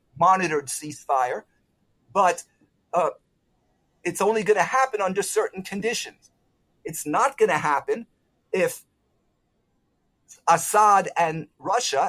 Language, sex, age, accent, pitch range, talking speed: English, male, 50-69, American, 150-205 Hz, 105 wpm